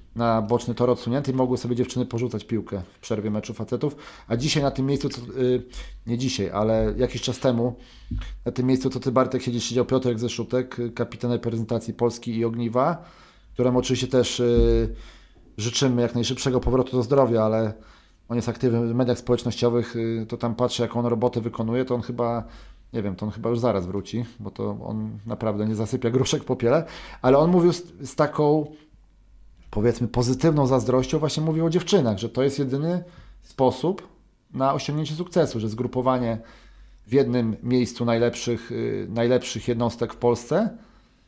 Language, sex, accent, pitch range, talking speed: Polish, male, native, 115-140 Hz, 170 wpm